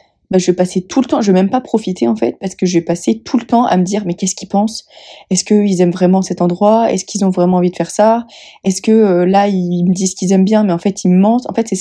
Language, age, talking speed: French, 20-39, 325 wpm